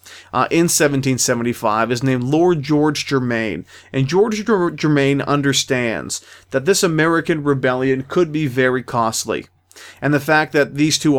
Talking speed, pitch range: 140 wpm, 130-155 Hz